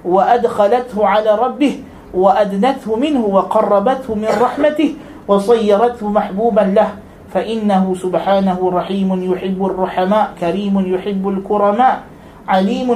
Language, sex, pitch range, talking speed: Malay, male, 190-240 Hz, 95 wpm